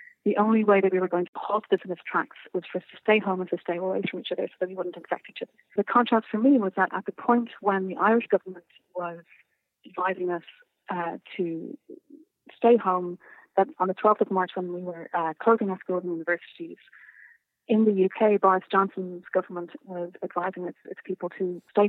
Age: 30-49